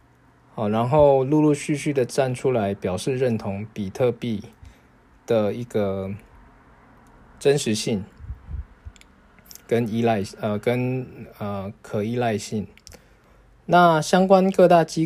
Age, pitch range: 20-39, 105-145 Hz